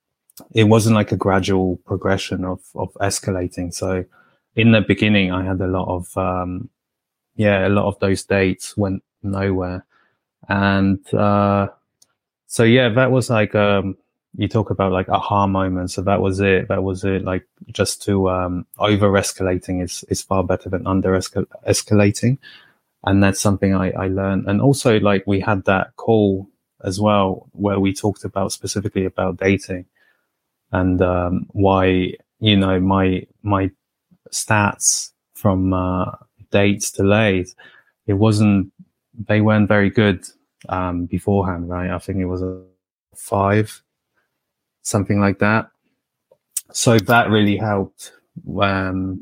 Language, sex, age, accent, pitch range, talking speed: English, male, 20-39, British, 95-105 Hz, 145 wpm